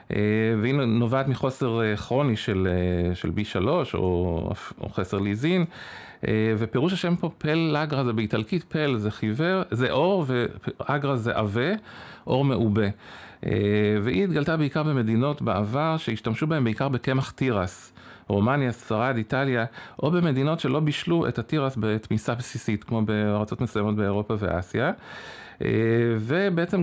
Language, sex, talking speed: Hebrew, male, 125 wpm